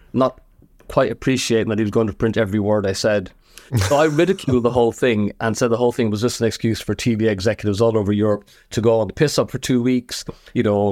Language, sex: English, male